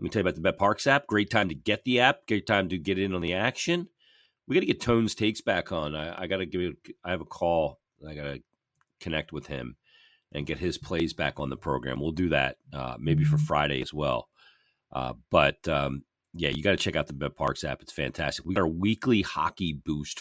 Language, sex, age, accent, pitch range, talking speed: English, male, 40-59, American, 75-95 Hz, 245 wpm